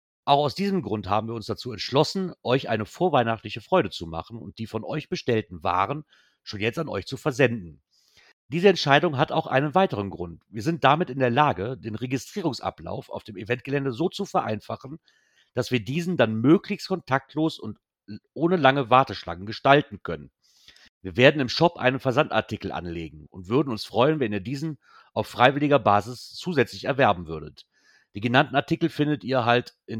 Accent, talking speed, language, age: German, 175 wpm, German, 40-59